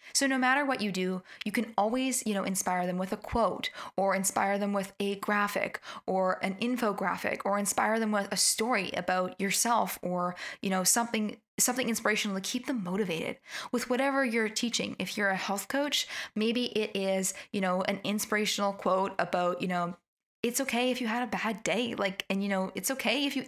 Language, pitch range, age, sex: English, 190-225 Hz, 10-29, female